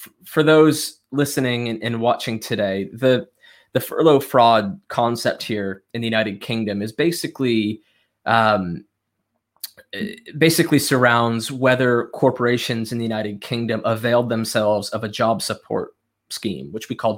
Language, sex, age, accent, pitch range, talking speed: English, male, 20-39, American, 110-130 Hz, 130 wpm